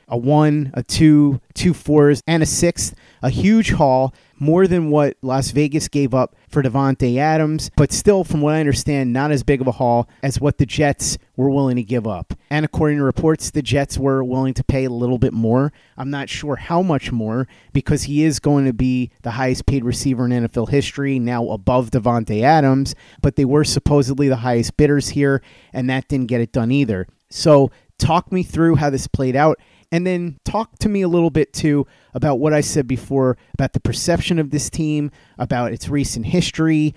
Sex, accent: male, American